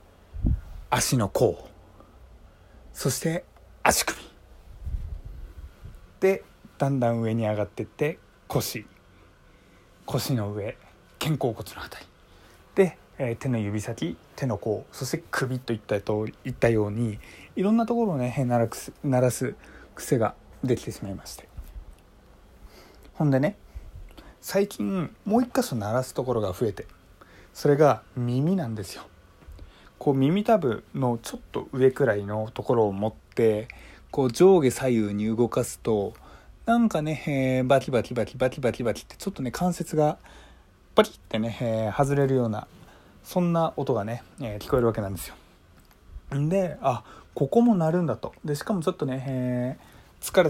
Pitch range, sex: 100-140 Hz, male